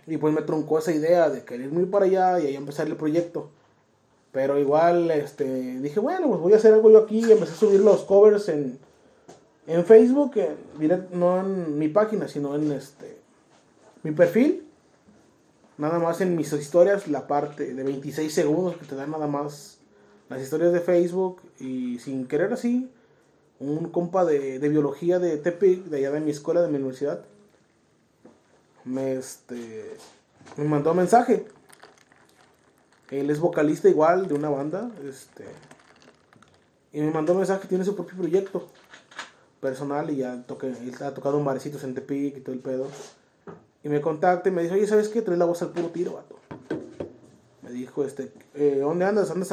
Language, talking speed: Spanish, 180 wpm